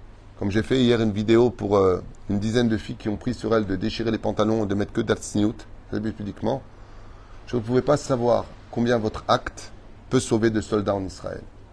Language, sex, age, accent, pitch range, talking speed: French, male, 30-49, French, 100-115 Hz, 215 wpm